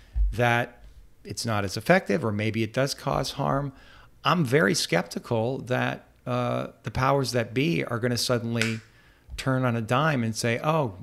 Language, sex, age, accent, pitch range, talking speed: English, male, 40-59, American, 110-130 Hz, 170 wpm